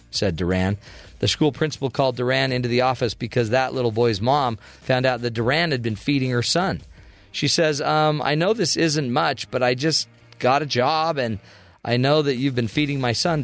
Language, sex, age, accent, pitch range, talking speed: English, male, 40-59, American, 115-155 Hz, 210 wpm